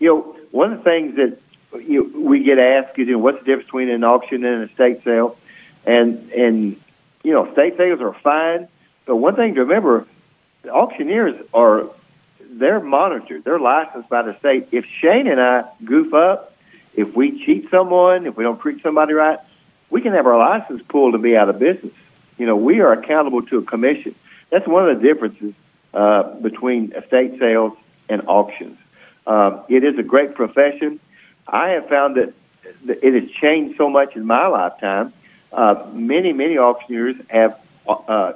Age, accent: 50-69, American